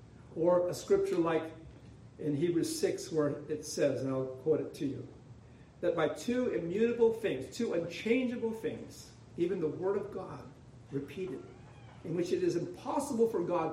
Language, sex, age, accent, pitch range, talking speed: English, male, 50-69, American, 135-190 Hz, 160 wpm